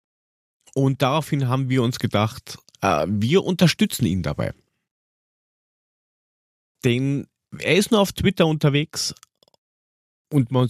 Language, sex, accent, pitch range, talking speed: German, male, German, 110-140 Hz, 110 wpm